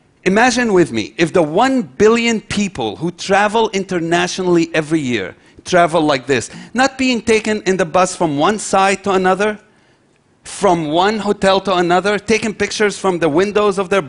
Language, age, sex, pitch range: Chinese, 40-59, male, 150-195 Hz